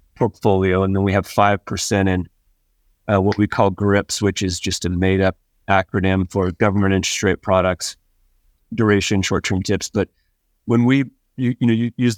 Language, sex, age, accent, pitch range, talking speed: English, male, 30-49, American, 95-115 Hz, 170 wpm